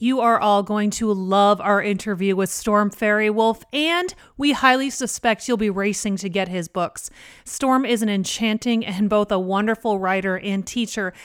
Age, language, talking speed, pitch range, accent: 30-49, English, 180 wpm, 200-245 Hz, American